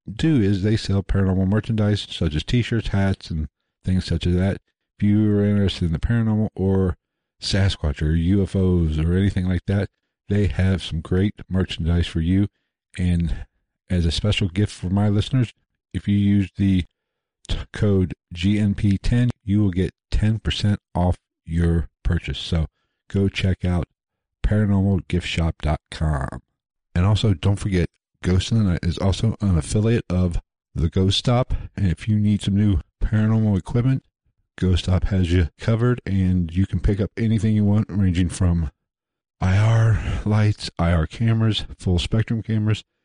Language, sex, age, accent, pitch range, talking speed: English, male, 50-69, American, 90-105 Hz, 150 wpm